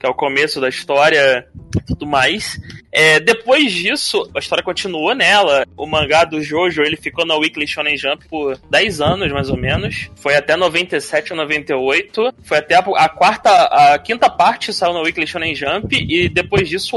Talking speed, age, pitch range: 180 wpm, 20-39, 155-240 Hz